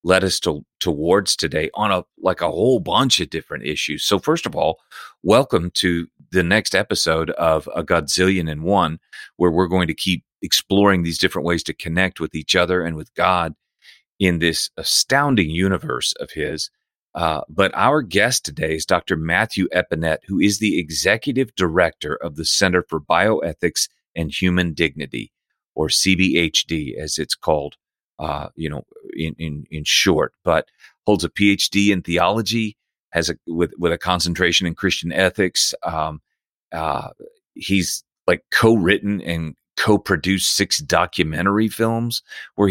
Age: 40-59